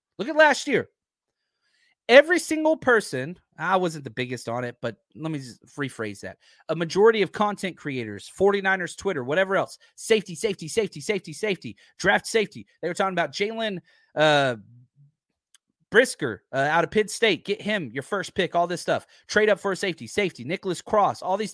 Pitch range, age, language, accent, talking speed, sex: 140-200 Hz, 30-49, English, American, 180 wpm, male